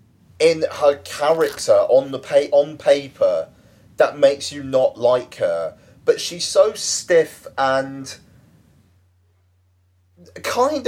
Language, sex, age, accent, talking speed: English, male, 30-49, British, 110 wpm